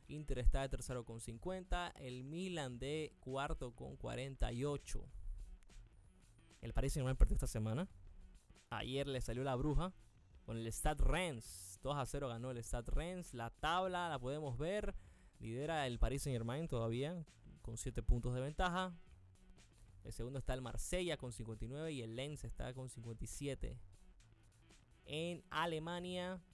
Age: 20-39